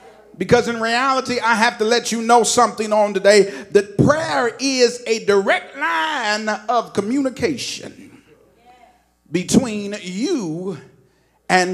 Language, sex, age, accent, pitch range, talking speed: English, male, 40-59, American, 210-290 Hz, 120 wpm